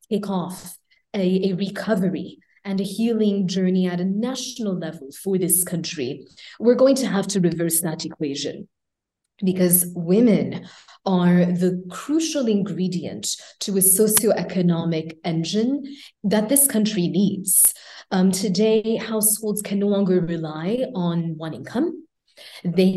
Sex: female